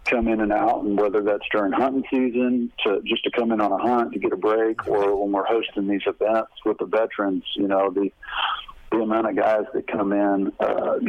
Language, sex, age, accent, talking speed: English, male, 50-69, American, 225 wpm